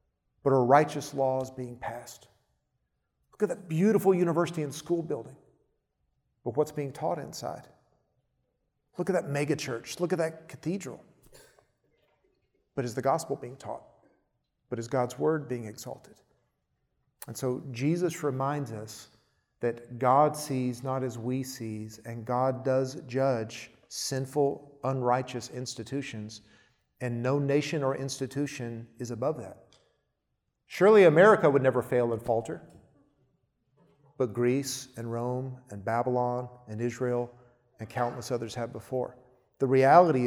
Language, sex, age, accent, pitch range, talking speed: English, male, 40-59, American, 120-145 Hz, 135 wpm